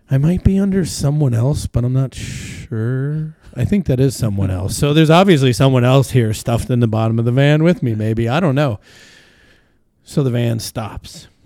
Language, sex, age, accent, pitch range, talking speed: English, male, 30-49, American, 110-135 Hz, 205 wpm